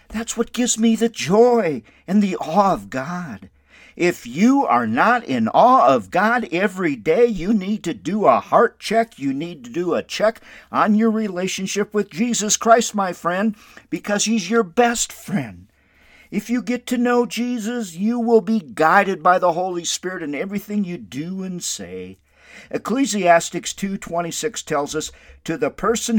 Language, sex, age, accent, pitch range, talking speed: English, male, 50-69, American, 170-230 Hz, 170 wpm